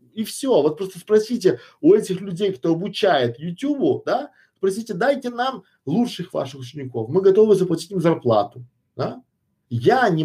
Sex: male